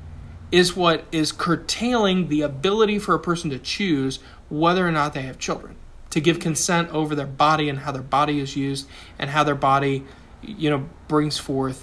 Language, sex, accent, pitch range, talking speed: English, male, American, 140-180 Hz, 190 wpm